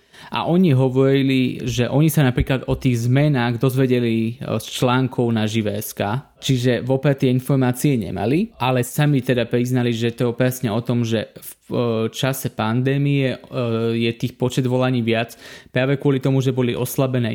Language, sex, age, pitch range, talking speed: Slovak, male, 20-39, 120-135 Hz, 155 wpm